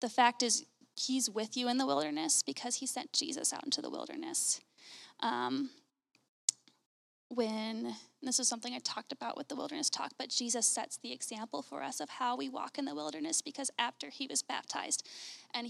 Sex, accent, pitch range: female, American, 230-275 Hz